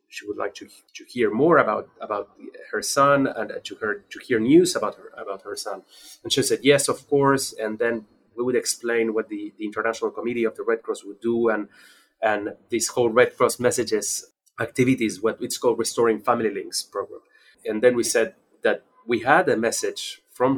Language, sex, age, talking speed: English, male, 30-49, 200 wpm